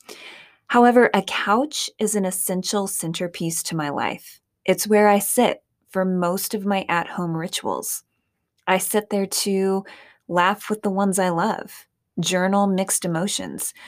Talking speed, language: 145 wpm, English